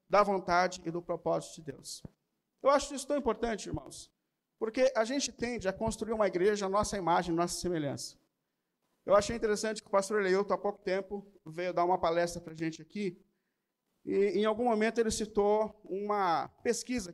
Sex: male